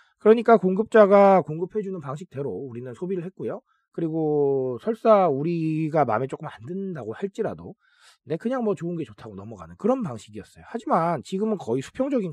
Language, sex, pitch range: Korean, male, 150-230 Hz